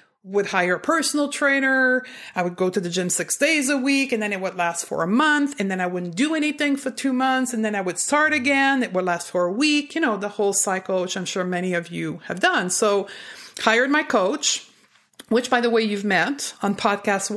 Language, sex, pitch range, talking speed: English, female, 200-270 Hz, 240 wpm